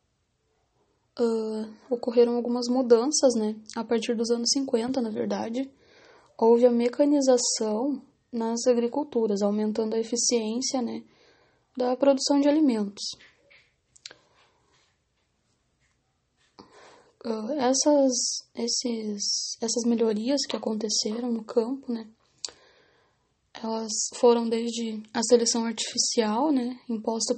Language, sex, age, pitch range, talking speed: English, female, 10-29, 225-255 Hz, 90 wpm